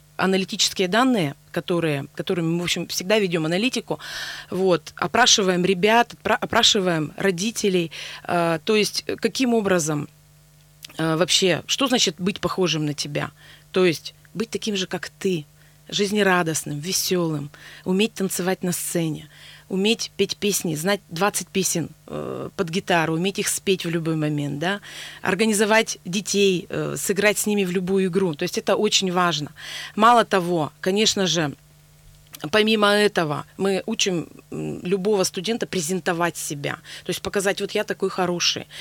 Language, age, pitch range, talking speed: Russian, 30-49, 165-205 Hz, 135 wpm